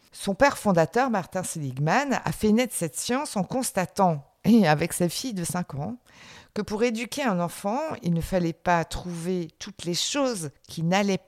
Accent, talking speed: French, 180 wpm